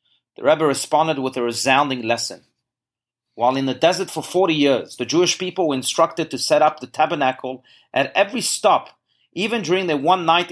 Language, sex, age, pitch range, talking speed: English, male, 40-59, 130-165 Hz, 175 wpm